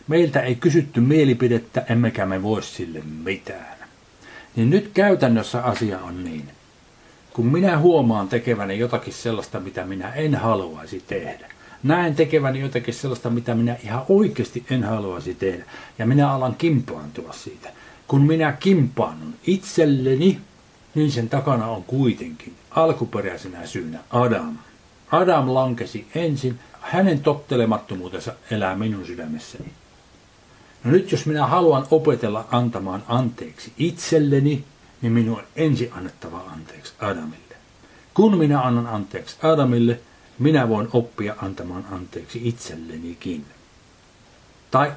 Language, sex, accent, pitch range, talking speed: Finnish, male, native, 105-145 Hz, 120 wpm